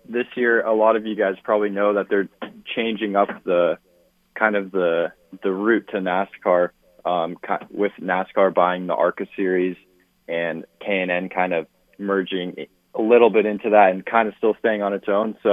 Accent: American